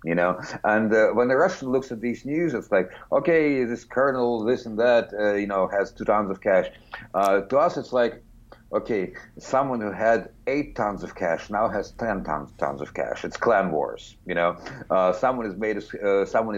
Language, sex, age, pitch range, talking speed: English, male, 50-69, 90-115 Hz, 215 wpm